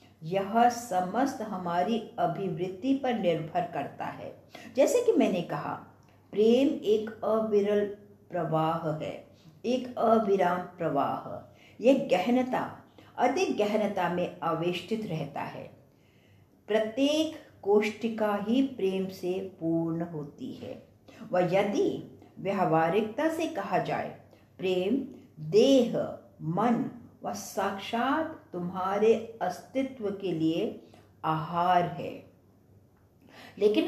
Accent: Indian